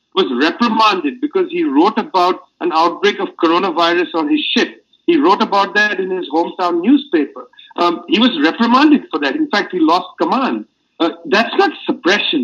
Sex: male